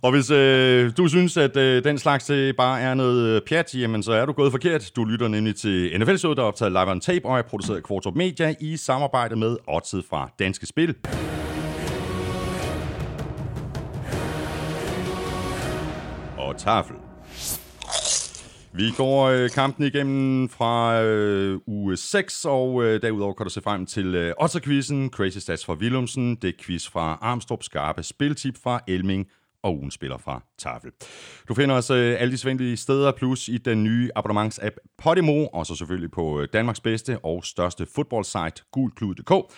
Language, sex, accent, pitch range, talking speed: Danish, male, native, 90-130 Hz, 160 wpm